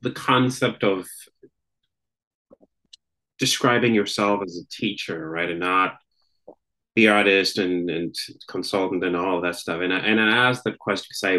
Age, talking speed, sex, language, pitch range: 30-49, 150 wpm, male, English, 80-100 Hz